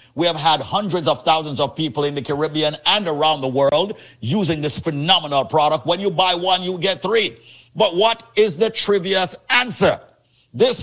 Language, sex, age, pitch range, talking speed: English, male, 50-69, 145-205 Hz, 185 wpm